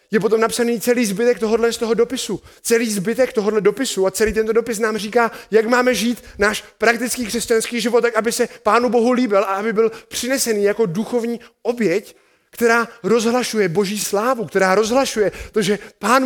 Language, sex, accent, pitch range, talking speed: Czech, male, native, 190-230 Hz, 175 wpm